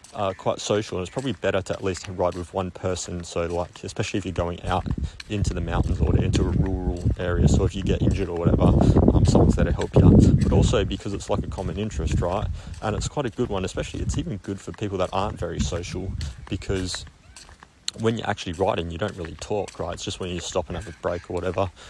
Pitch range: 90-105 Hz